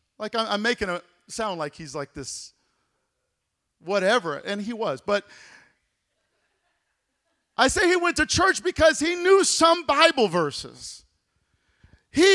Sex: male